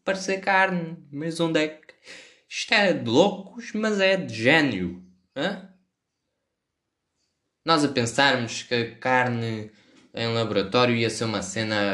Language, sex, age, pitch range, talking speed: Portuguese, male, 20-39, 95-145 Hz, 135 wpm